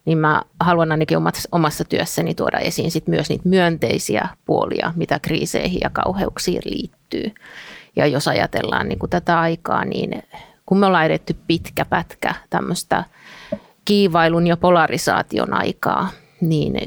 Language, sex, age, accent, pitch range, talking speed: Finnish, female, 30-49, native, 155-185 Hz, 120 wpm